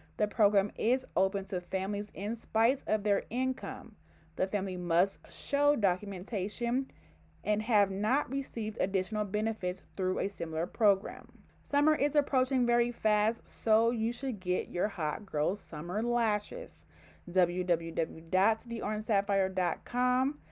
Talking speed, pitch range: 120 wpm, 180-235 Hz